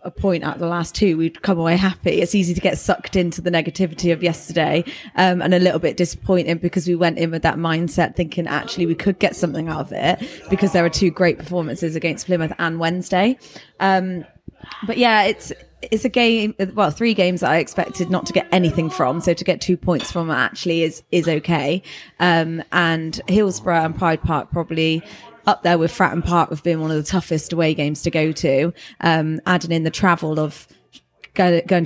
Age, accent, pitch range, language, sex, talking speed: 20-39, British, 160-180 Hz, English, female, 210 wpm